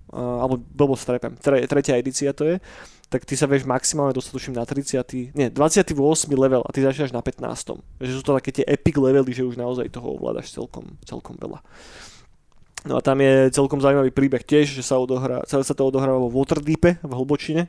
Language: Slovak